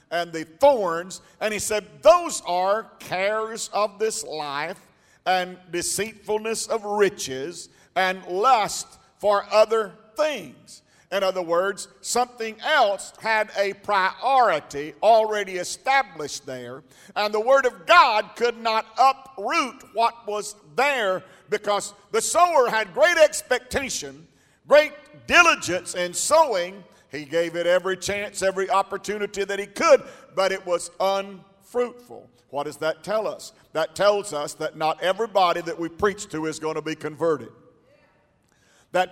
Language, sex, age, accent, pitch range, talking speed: English, male, 50-69, American, 170-220 Hz, 135 wpm